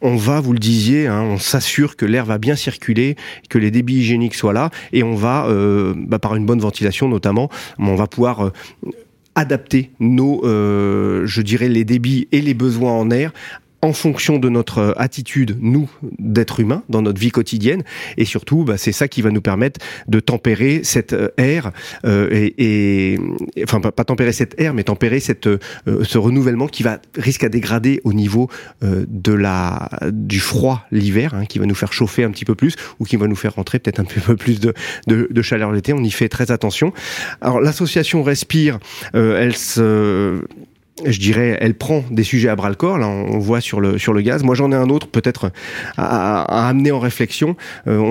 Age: 30-49